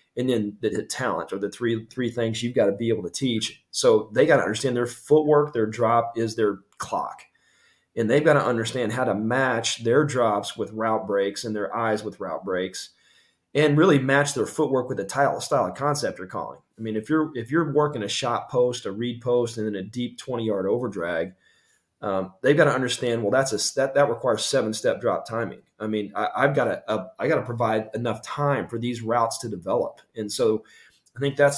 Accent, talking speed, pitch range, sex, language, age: American, 225 wpm, 110-125 Hz, male, English, 30-49